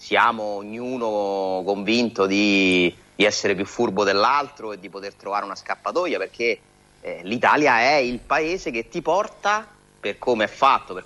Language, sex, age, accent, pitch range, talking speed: Italian, male, 30-49, native, 100-145 Hz, 155 wpm